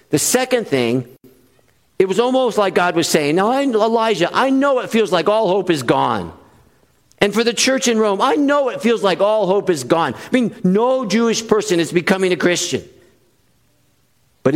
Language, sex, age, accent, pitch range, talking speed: English, male, 50-69, American, 160-220 Hz, 190 wpm